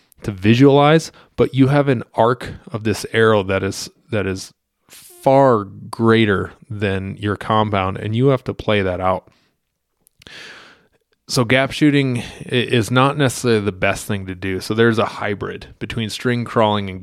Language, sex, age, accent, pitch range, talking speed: English, male, 20-39, American, 100-125 Hz, 160 wpm